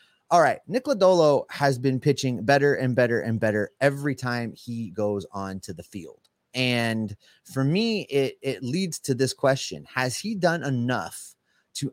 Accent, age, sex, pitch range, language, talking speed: American, 30-49, male, 115-160 Hz, English, 170 wpm